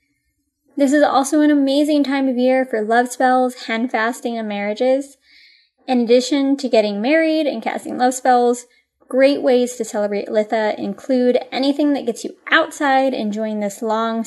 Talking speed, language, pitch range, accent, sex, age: 160 wpm, English, 220-285 Hz, American, female, 10-29